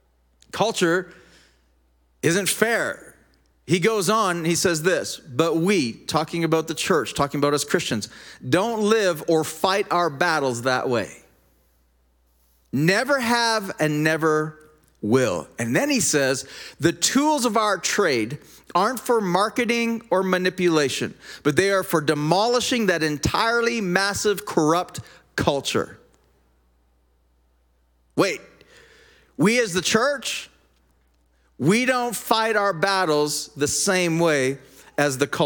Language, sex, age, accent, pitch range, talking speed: English, male, 40-59, American, 145-210 Hz, 120 wpm